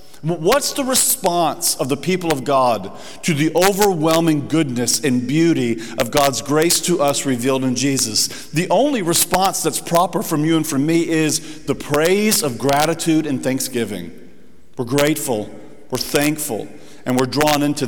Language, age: English, 50-69